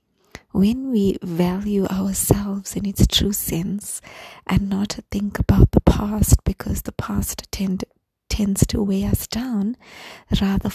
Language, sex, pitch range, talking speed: English, female, 190-205 Hz, 130 wpm